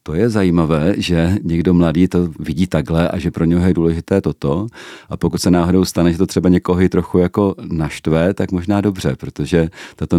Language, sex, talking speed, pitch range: Czech, male, 200 wpm, 80-90 Hz